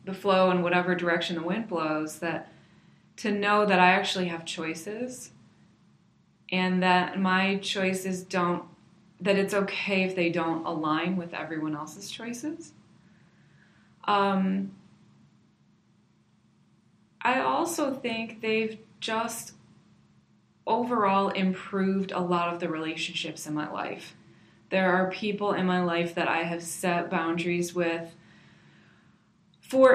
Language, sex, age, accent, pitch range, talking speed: English, female, 20-39, American, 170-195 Hz, 120 wpm